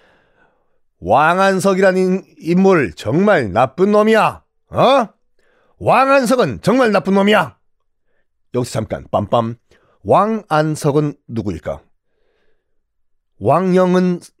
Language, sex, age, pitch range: Korean, male, 40-59, 135-205 Hz